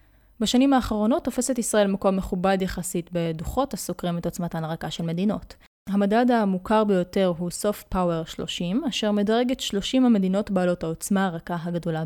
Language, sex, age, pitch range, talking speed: Hebrew, female, 20-39, 180-225 Hz, 150 wpm